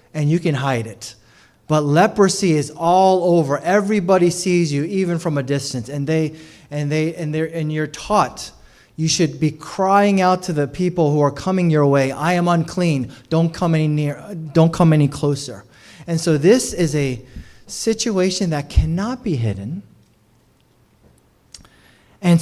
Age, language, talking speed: 30-49, English, 160 wpm